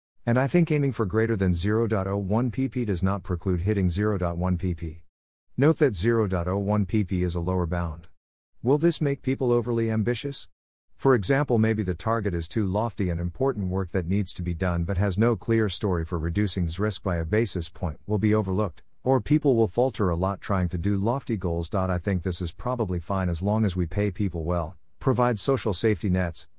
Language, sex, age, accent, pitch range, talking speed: English, male, 50-69, American, 90-115 Hz, 190 wpm